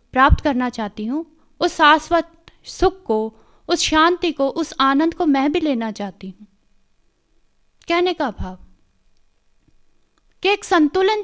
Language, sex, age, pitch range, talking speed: Hindi, female, 20-39, 230-330 Hz, 135 wpm